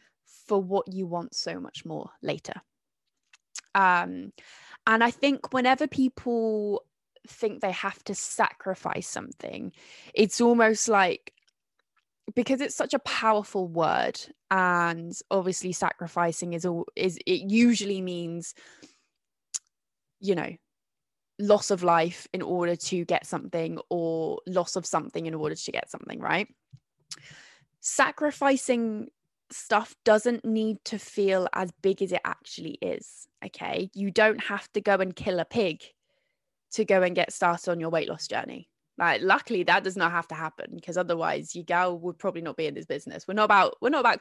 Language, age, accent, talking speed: English, 20-39, British, 155 wpm